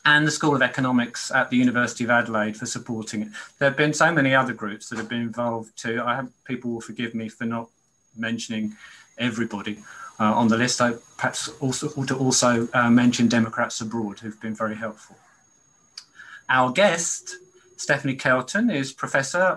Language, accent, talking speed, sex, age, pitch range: English, British, 180 wpm, male, 30-49, 115-140 Hz